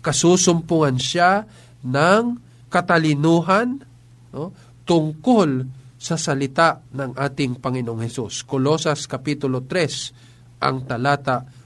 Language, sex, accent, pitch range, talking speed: Filipino, male, native, 125-155 Hz, 90 wpm